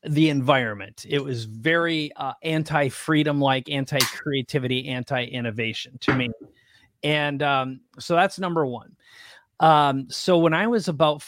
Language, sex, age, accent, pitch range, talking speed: English, male, 30-49, American, 130-165 Hz, 145 wpm